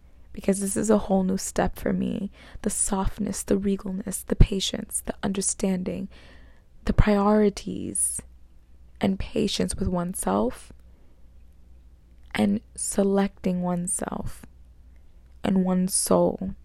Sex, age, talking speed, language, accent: female, 20-39, 105 wpm, English, American